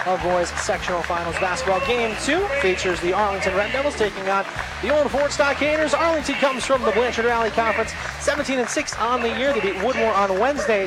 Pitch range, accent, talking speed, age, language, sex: 205-275 Hz, American, 200 wpm, 30-49, English, male